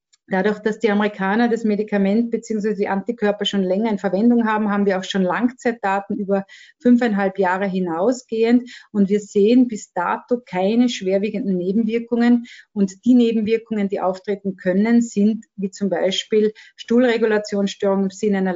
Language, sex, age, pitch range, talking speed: German, female, 30-49, 195-225 Hz, 145 wpm